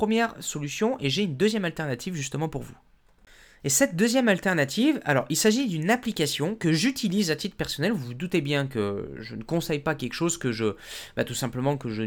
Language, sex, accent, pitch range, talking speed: French, male, French, 130-195 Hz, 210 wpm